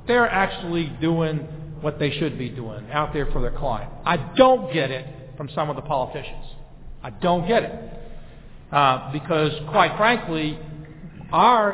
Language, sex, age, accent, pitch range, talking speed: English, male, 50-69, American, 150-200 Hz, 160 wpm